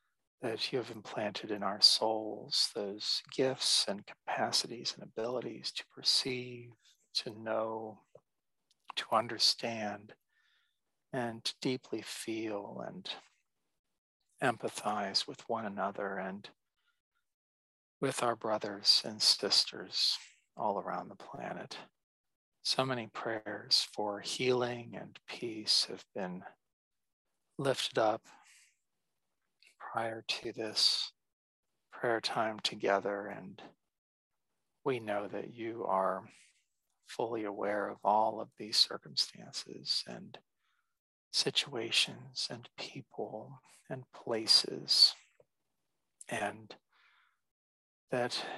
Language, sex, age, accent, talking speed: English, male, 40-59, American, 95 wpm